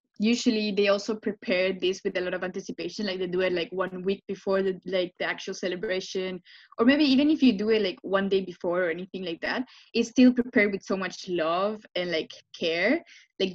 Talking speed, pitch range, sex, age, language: 215 wpm, 185-210 Hz, female, 20-39, English